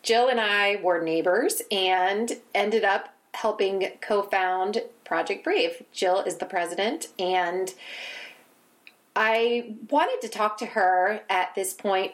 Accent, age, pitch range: American, 30-49, 180-210 Hz